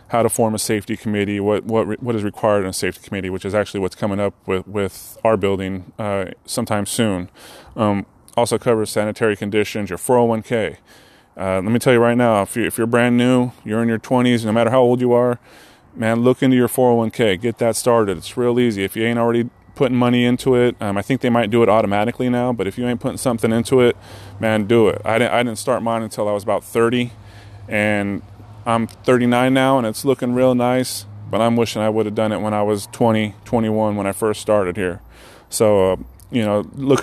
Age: 20-39